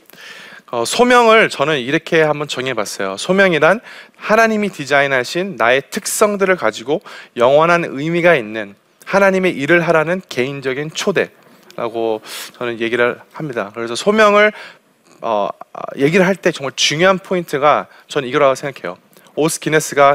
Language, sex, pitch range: Korean, male, 140-195 Hz